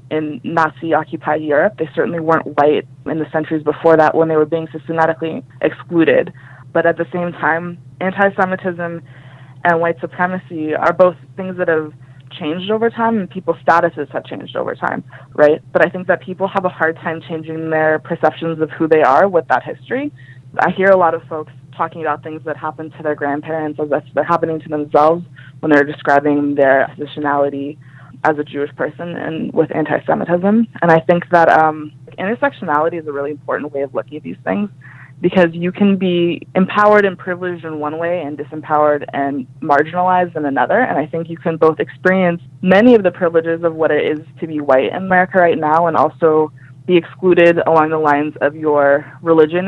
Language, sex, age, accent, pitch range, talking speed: English, female, 20-39, American, 150-175 Hz, 190 wpm